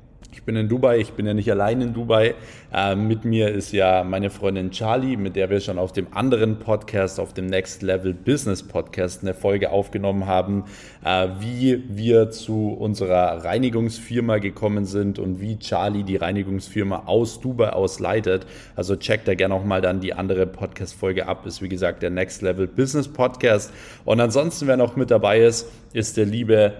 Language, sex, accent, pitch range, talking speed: German, male, German, 95-115 Hz, 180 wpm